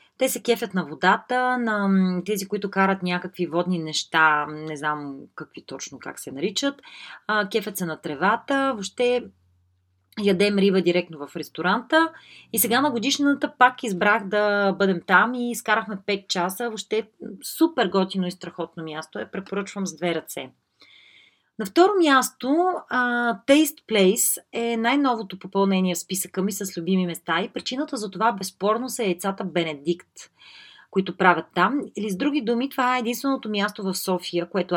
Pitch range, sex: 175-235 Hz, female